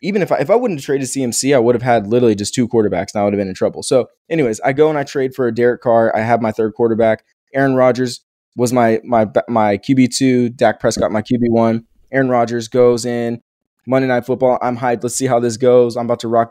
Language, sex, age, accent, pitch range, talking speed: English, male, 20-39, American, 110-135 Hz, 260 wpm